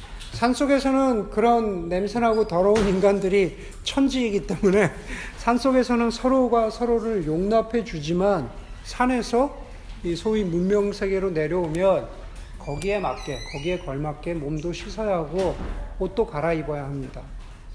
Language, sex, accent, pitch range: Korean, male, native, 165-225 Hz